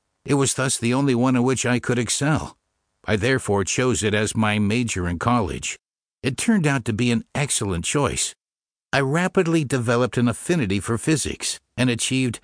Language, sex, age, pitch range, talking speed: English, male, 60-79, 110-140 Hz, 180 wpm